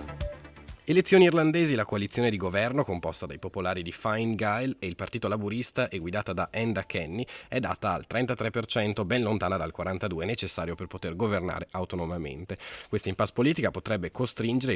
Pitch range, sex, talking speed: 90-120 Hz, male, 155 wpm